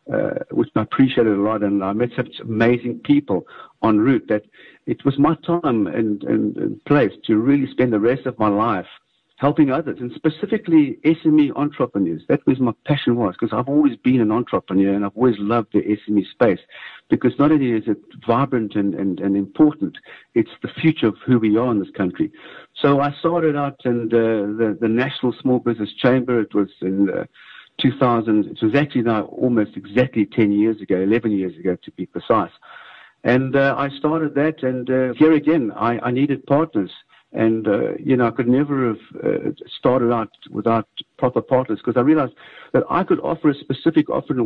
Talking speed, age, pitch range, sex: 195 wpm, 60-79, 115-145 Hz, male